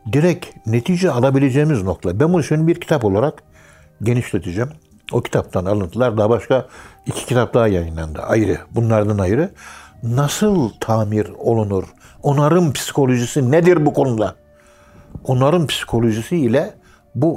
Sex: male